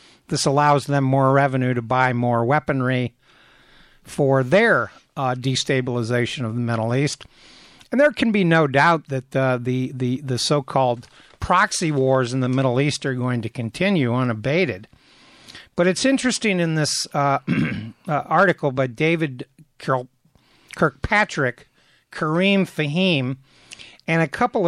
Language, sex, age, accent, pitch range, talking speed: English, male, 60-79, American, 130-165 Hz, 135 wpm